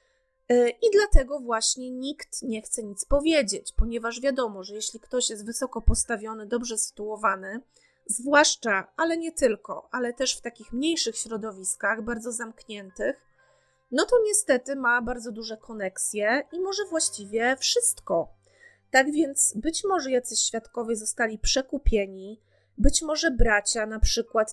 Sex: female